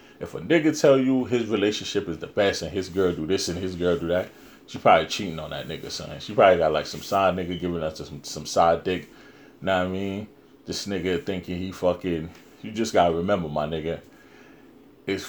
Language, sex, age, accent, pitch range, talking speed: English, male, 30-49, American, 85-95 Hz, 225 wpm